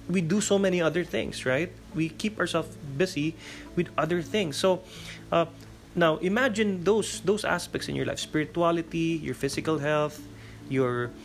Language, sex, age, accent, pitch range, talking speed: English, male, 20-39, Filipino, 115-170 Hz, 155 wpm